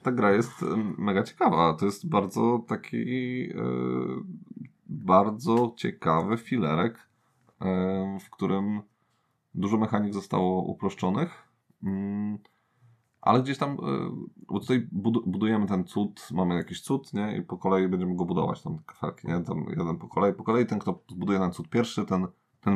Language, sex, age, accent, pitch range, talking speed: Polish, male, 20-39, native, 85-110 Hz, 135 wpm